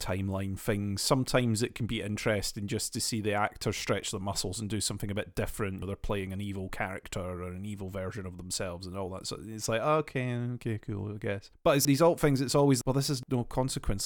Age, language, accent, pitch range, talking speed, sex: 30-49, English, British, 105-125 Hz, 240 wpm, male